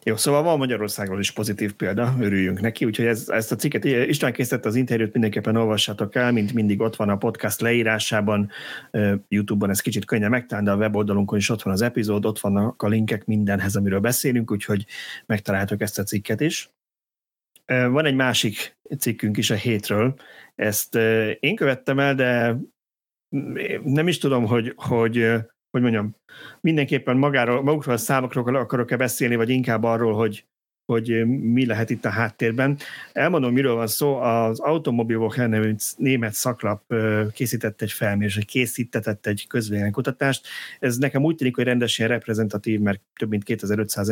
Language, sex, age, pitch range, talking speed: Hungarian, male, 30-49, 105-125 Hz, 155 wpm